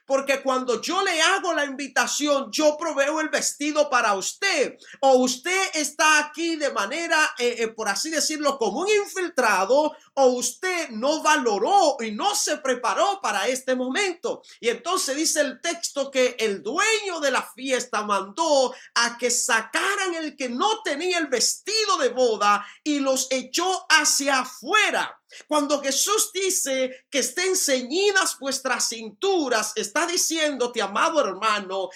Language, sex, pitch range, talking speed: Spanish, male, 255-345 Hz, 145 wpm